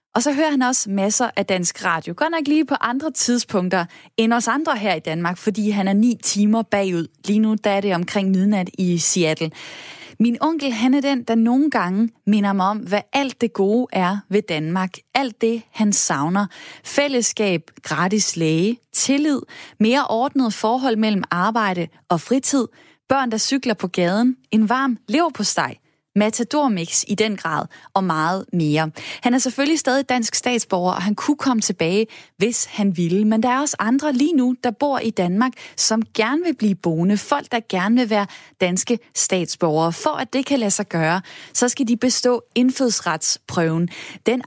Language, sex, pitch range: Danish, female, 190-250 Hz